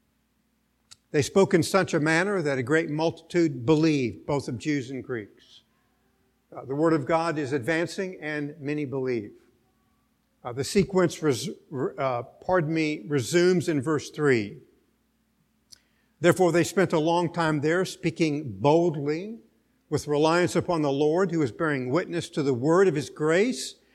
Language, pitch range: English, 140-175 Hz